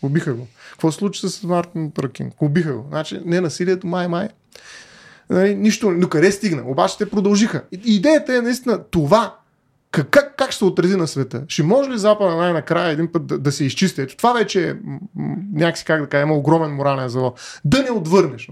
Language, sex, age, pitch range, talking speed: Bulgarian, male, 20-39, 155-205 Hz, 175 wpm